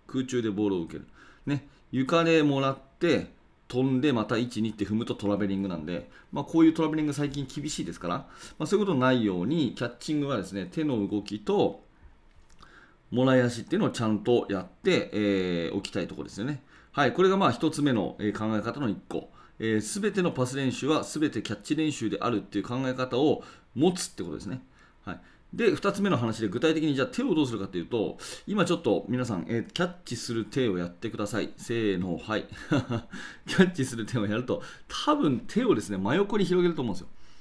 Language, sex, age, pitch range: Japanese, male, 40-59, 105-160 Hz